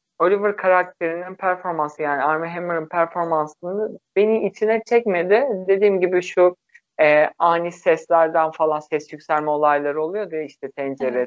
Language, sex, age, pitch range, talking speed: Turkish, male, 50-69, 150-190 Hz, 130 wpm